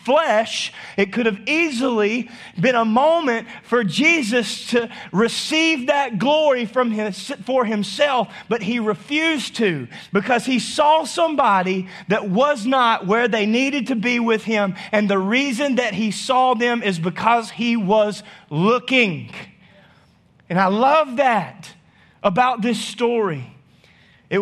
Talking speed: 135 wpm